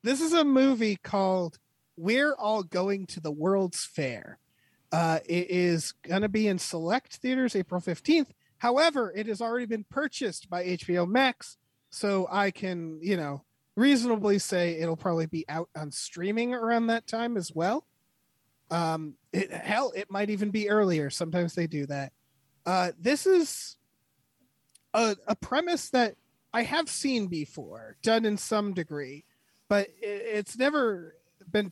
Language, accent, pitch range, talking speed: English, American, 170-230 Hz, 150 wpm